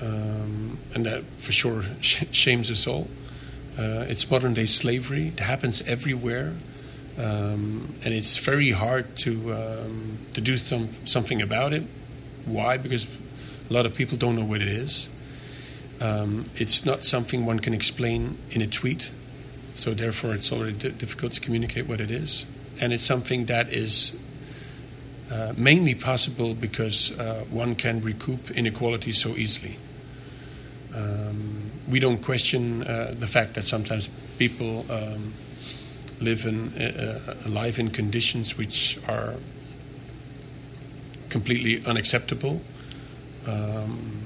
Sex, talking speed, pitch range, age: male, 135 wpm, 115-135 Hz, 40-59